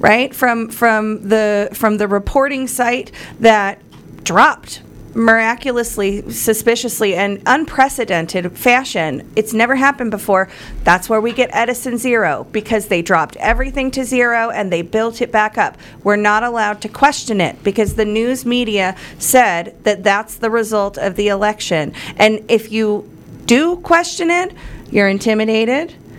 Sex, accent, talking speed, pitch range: female, American, 145 wpm, 200-240 Hz